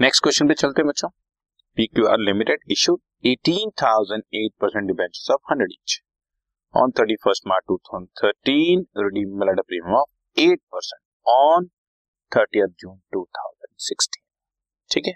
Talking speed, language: 115 wpm, Hindi